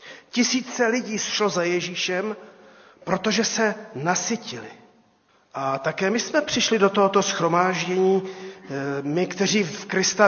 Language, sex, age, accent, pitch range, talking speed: Czech, male, 40-59, native, 160-210 Hz, 115 wpm